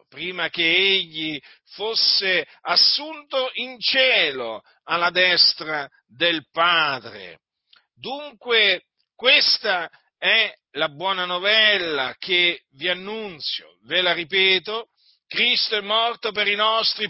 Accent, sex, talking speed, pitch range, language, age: native, male, 100 wpm, 180-230 Hz, Italian, 50-69